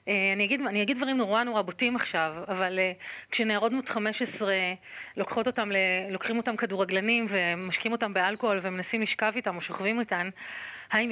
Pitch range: 200-245 Hz